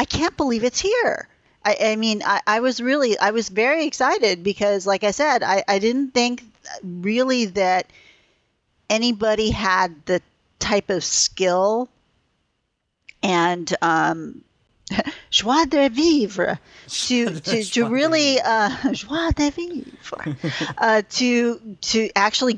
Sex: female